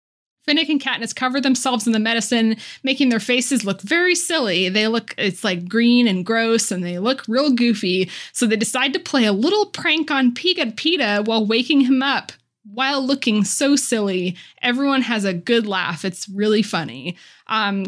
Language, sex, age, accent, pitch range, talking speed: English, female, 20-39, American, 200-275 Hz, 180 wpm